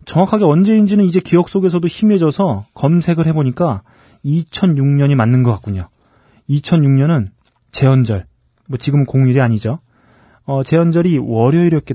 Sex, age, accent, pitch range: male, 30-49, native, 125-170 Hz